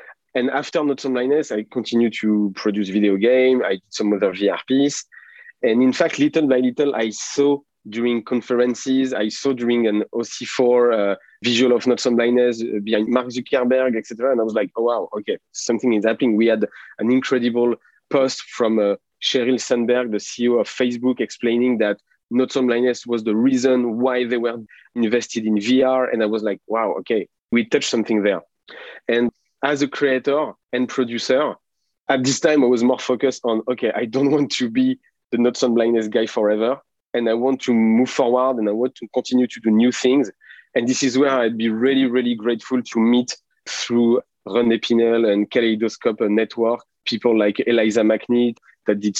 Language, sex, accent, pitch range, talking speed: English, male, French, 115-130 Hz, 185 wpm